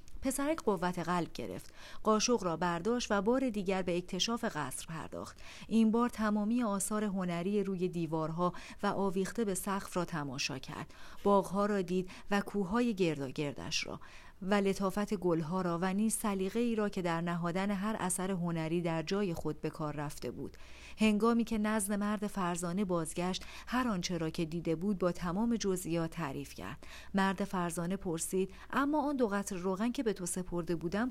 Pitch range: 170-215 Hz